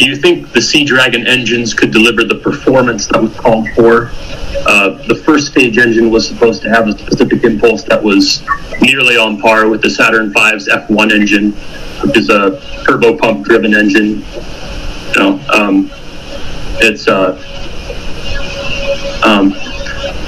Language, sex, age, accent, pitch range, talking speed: English, male, 30-49, American, 105-120 Hz, 140 wpm